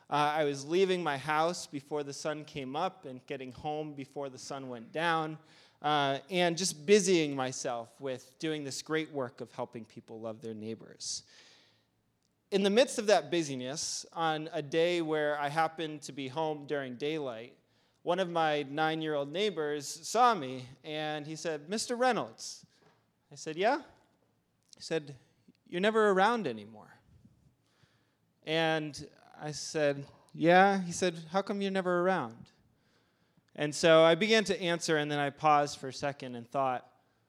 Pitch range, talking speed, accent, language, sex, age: 135-170 Hz, 160 wpm, American, English, male, 30-49